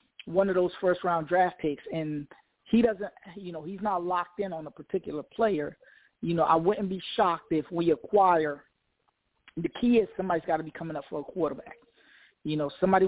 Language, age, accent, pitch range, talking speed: English, 20-39, American, 160-200 Hz, 195 wpm